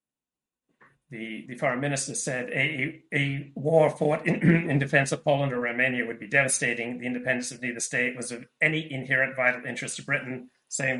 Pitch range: 120-140 Hz